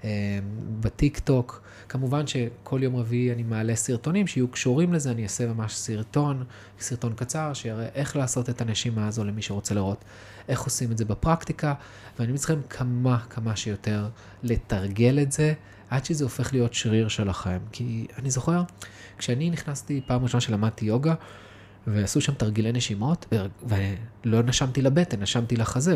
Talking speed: 155 wpm